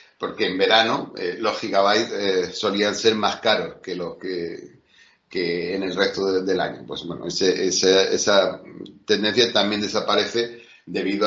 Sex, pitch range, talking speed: male, 100-125 Hz, 160 wpm